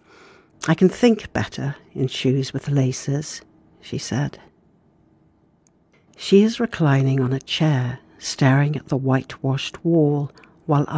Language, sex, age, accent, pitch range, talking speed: English, female, 60-79, British, 130-165 Hz, 120 wpm